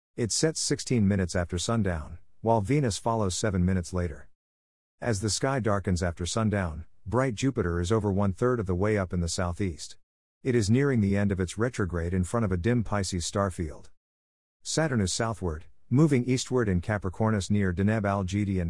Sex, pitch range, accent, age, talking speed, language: male, 90-115 Hz, American, 50-69, 180 wpm, English